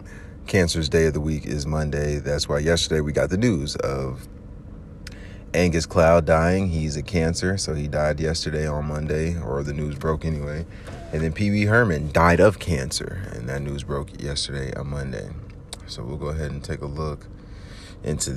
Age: 30-49